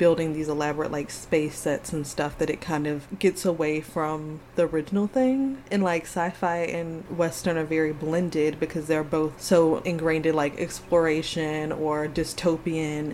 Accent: American